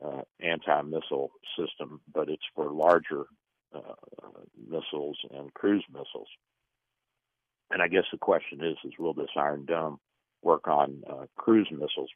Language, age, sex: English, 60-79, male